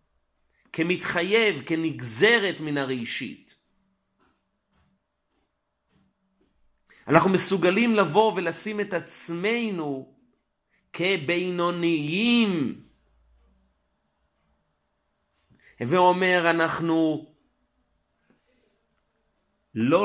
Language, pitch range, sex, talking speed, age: Hebrew, 135-180 Hz, male, 45 wpm, 40-59